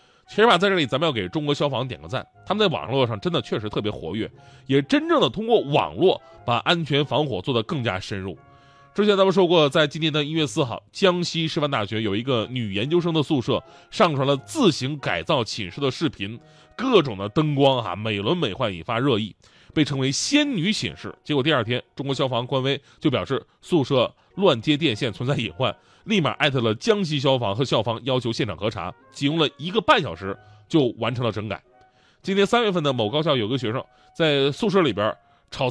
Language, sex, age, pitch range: Chinese, male, 20-39, 125-175 Hz